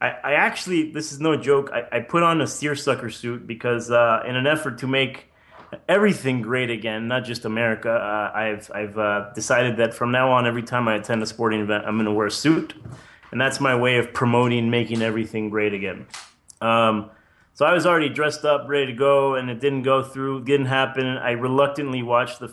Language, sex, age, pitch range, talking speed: English, male, 30-49, 115-135 Hz, 210 wpm